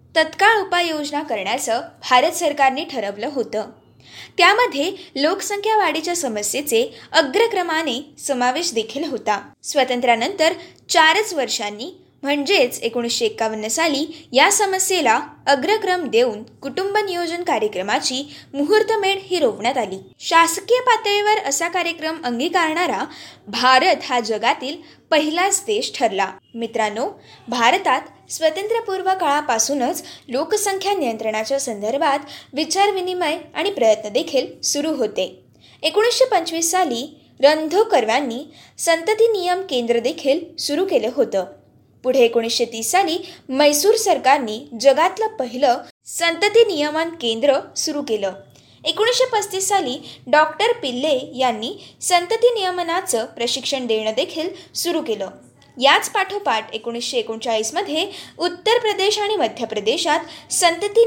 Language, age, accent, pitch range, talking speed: Marathi, 20-39, native, 250-375 Hz, 100 wpm